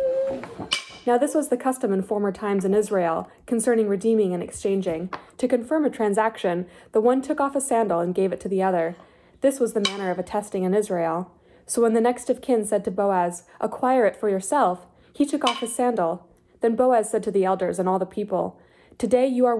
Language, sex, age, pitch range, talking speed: English, female, 20-39, 190-245 Hz, 210 wpm